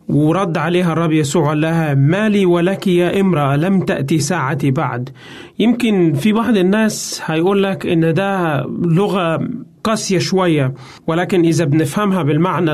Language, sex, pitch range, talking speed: Arabic, male, 155-190 Hz, 135 wpm